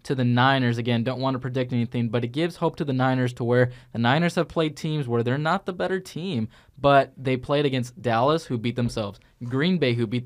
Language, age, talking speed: English, 20-39, 240 wpm